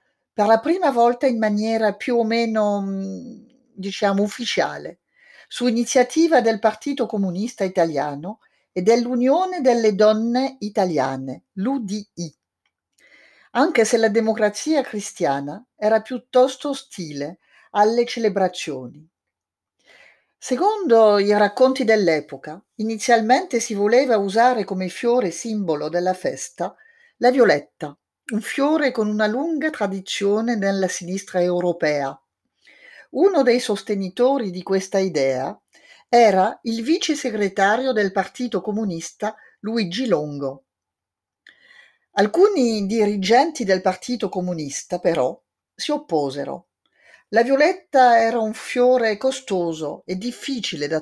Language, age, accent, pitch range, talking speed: Italian, 50-69, native, 190-250 Hz, 105 wpm